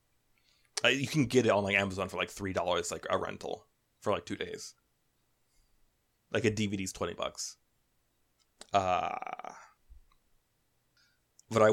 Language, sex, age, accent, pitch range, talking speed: English, male, 20-39, American, 95-115 Hz, 130 wpm